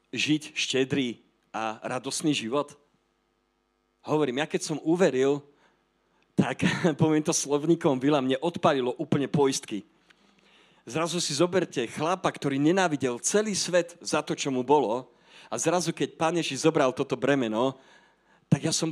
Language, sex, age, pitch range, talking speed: Slovak, male, 40-59, 125-165 Hz, 135 wpm